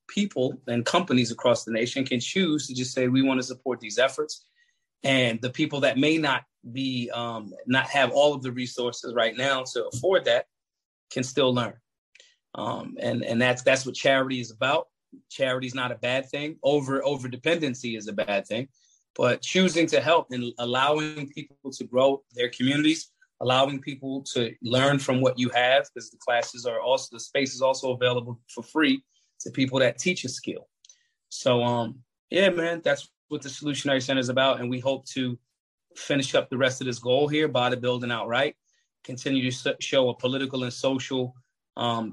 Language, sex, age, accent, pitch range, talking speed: English, male, 30-49, American, 125-140 Hz, 190 wpm